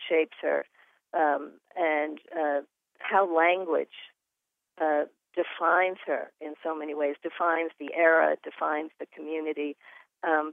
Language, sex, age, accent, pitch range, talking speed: English, female, 50-69, American, 145-175 Hz, 120 wpm